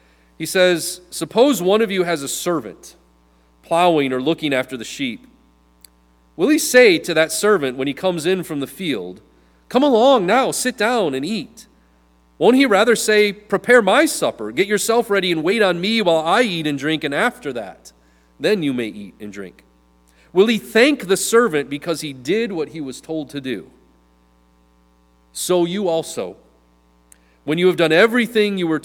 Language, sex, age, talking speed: English, male, 30-49, 180 wpm